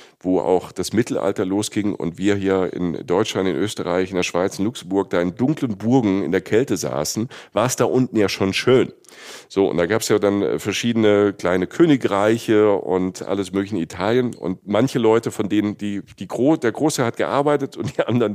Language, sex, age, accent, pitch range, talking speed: German, male, 50-69, German, 100-135 Hz, 205 wpm